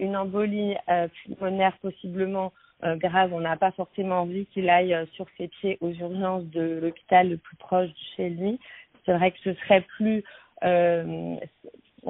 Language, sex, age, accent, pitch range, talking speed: French, female, 40-59, French, 175-195 Hz, 175 wpm